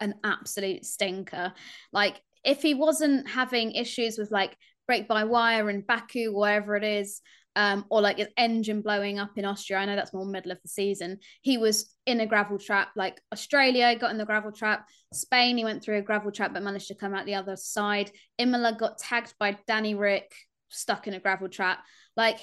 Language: English